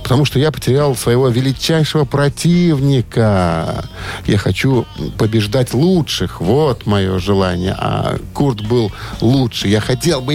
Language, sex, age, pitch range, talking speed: Russian, male, 50-69, 100-140 Hz, 120 wpm